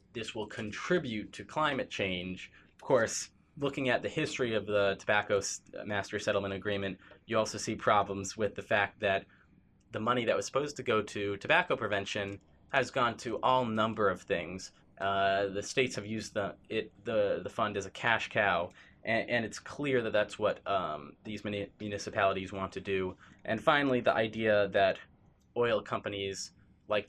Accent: American